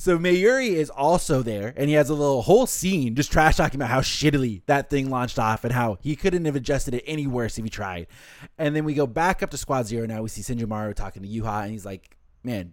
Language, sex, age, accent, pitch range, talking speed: English, male, 20-39, American, 110-145 Hz, 255 wpm